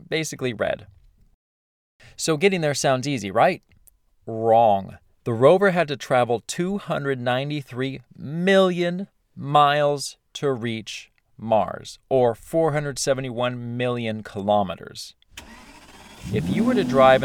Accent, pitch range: American, 110-145 Hz